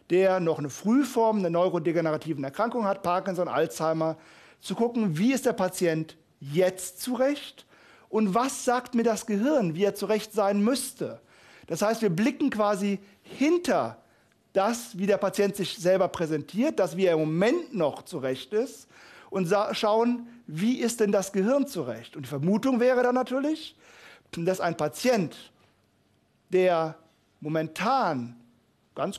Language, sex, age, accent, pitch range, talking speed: German, male, 40-59, German, 165-230 Hz, 145 wpm